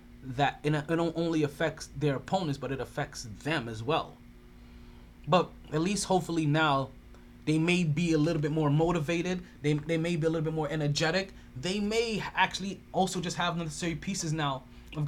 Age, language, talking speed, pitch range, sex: 20-39, English, 175 wpm, 140-175 Hz, male